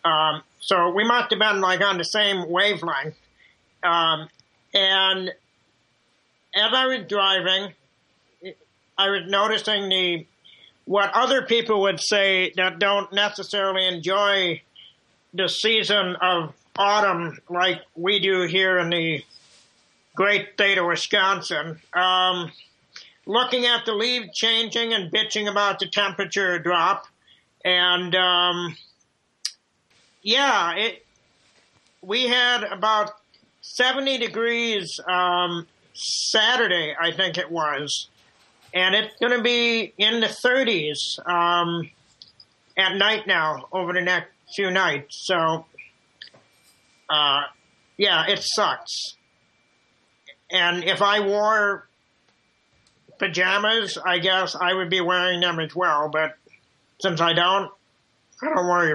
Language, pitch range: English, 175-205 Hz